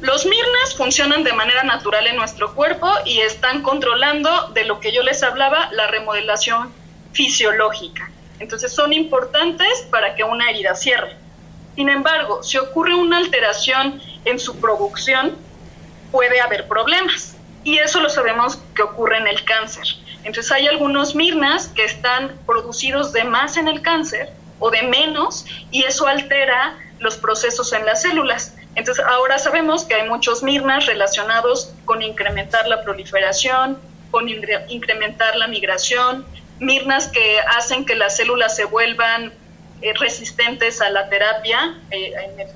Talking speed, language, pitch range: 150 wpm, Spanish, 220-280 Hz